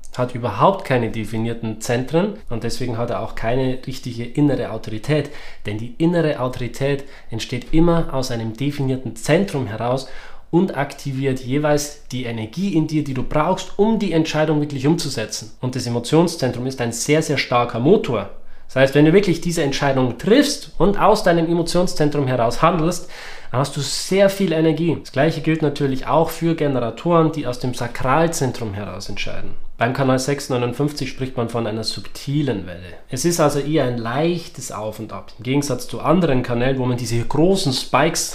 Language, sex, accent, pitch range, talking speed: German, male, German, 120-155 Hz, 170 wpm